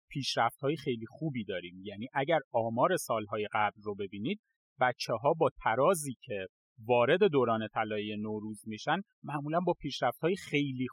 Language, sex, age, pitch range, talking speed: Persian, male, 30-49, 130-215 Hz, 135 wpm